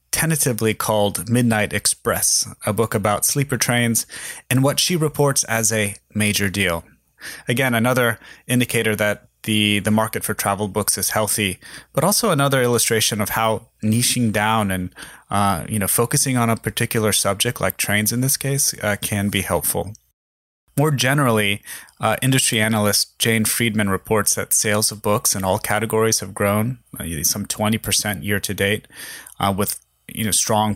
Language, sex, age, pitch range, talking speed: English, male, 30-49, 100-120 Hz, 165 wpm